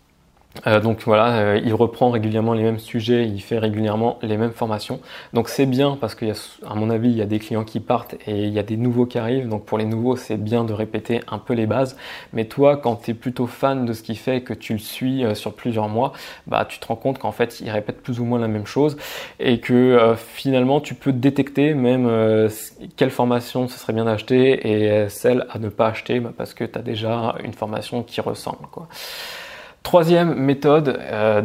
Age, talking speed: 20-39, 235 wpm